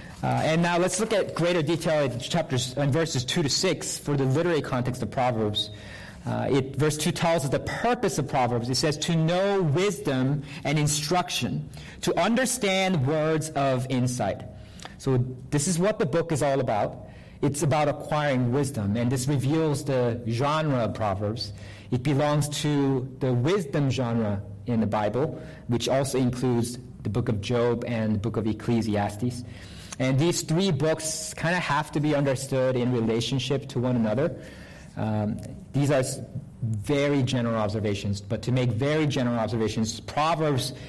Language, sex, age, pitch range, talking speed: English, male, 40-59, 120-155 Hz, 160 wpm